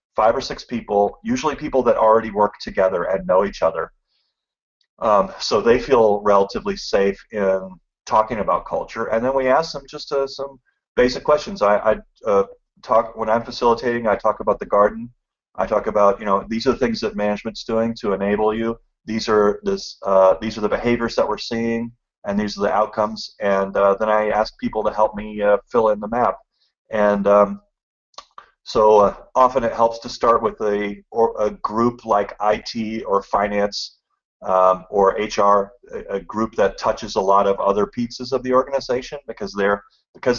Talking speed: 190 wpm